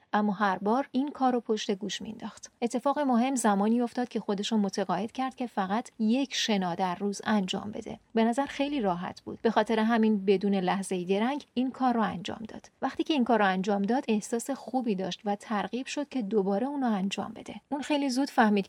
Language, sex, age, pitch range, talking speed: Persian, female, 40-59, 200-240 Hz, 205 wpm